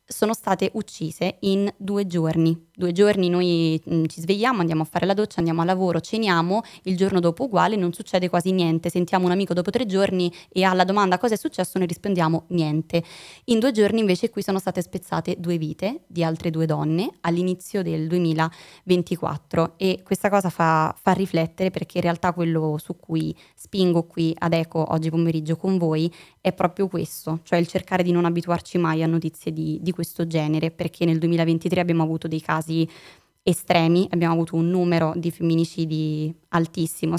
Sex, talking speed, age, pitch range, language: female, 180 wpm, 20-39, 160-185 Hz, Italian